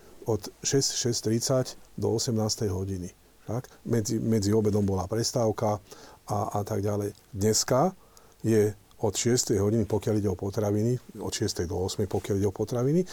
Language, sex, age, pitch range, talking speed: Slovak, male, 40-59, 105-135 Hz, 145 wpm